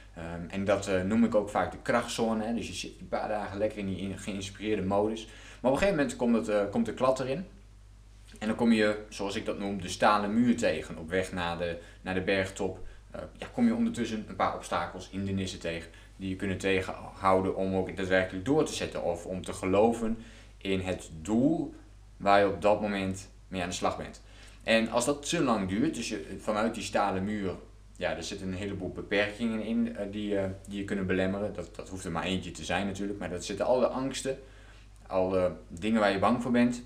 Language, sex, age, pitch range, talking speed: Dutch, male, 20-39, 95-110 Hz, 225 wpm